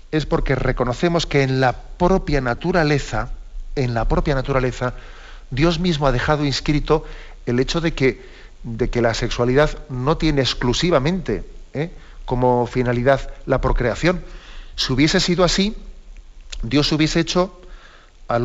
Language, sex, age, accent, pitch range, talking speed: Spanish, male, 40-59, Spanish, 125-160 Hz, 125 wpm